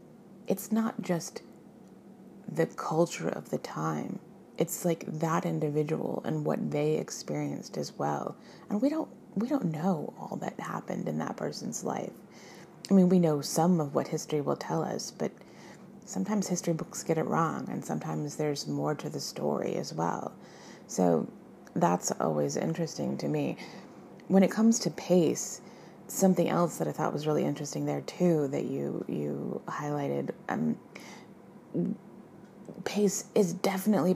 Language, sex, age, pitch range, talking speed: English, female, 30-49, 155-195 Hz, 155 wpm